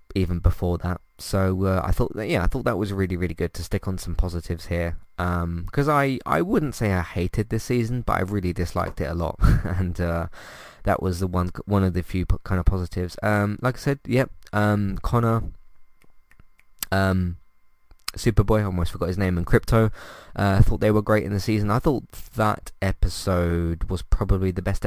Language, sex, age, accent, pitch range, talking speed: English, male, 20-39, British, 90-105 Hz, 210 wpm